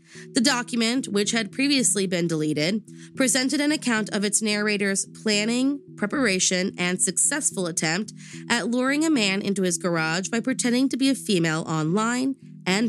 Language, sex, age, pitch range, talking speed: English, female, 20-39, 175-250 Hz, 155 wpm